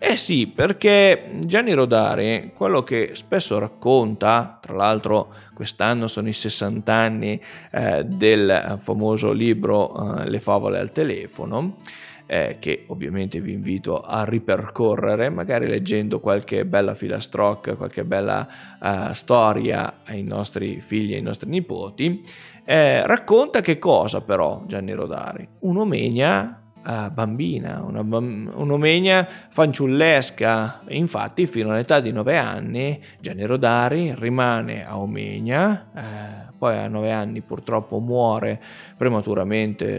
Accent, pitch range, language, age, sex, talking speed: native, 110-130 Hz, Italian, 20-39, male, 120 wpm